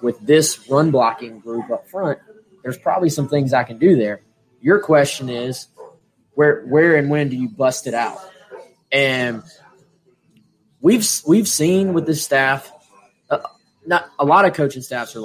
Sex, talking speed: male, 165 wpm